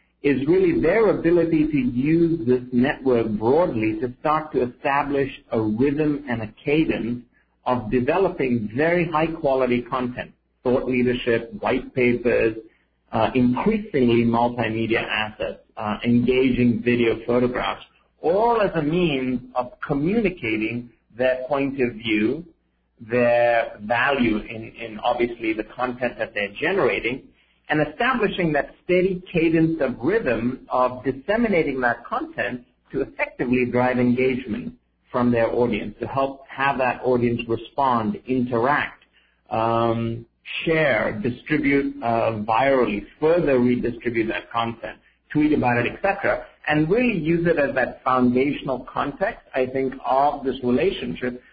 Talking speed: 125 wpm